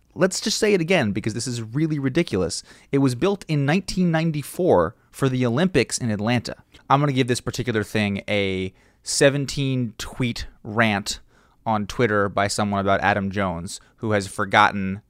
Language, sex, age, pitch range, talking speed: English, male, 20-39, 100-135 Hz, 160 wpm